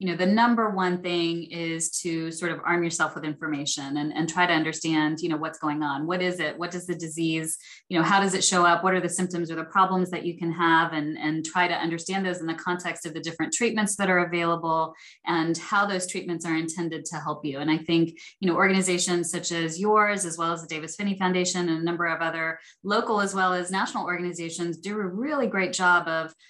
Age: 20-39